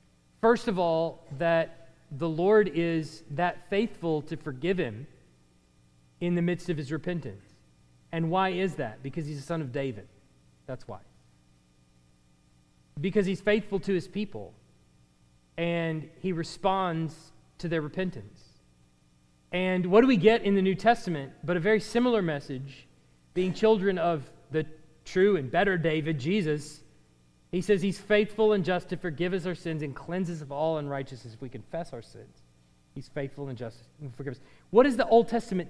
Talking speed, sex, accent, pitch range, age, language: 165 wpm, male, American, 135-210 Hz, 40-59, English